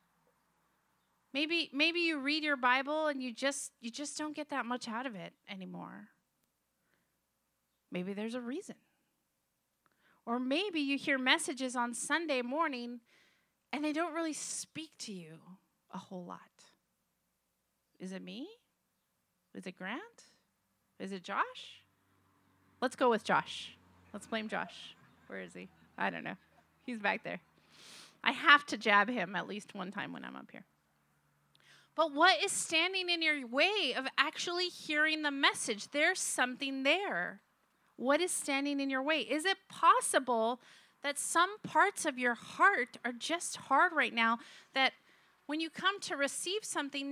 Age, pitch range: 30-49, 235-315 Hz